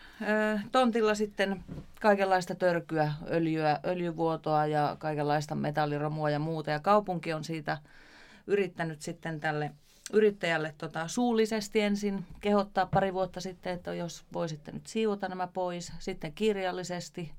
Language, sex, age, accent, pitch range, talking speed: Finnish, female, 30-49, native, 150-190 Hz, 120 wpm